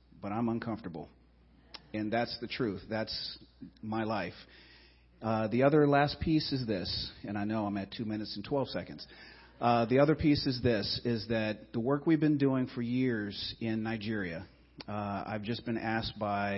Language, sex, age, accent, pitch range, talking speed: English, male, 40-59, American, 100-115 Hz, 180 wpm